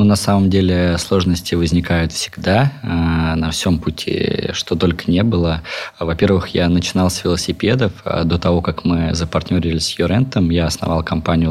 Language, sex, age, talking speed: Russian, male, 20-39, 150 wpm